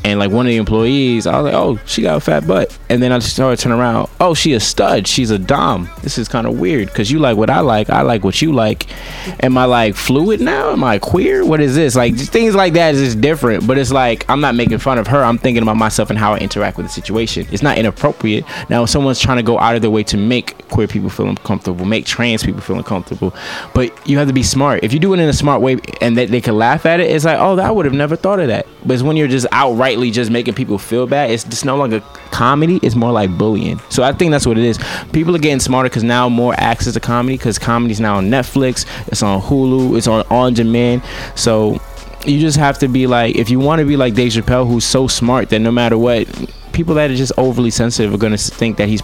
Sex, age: male, 20-39